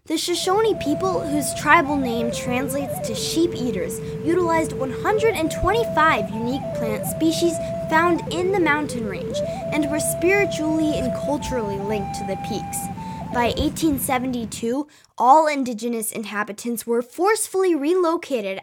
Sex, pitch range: female, 225-320 Hz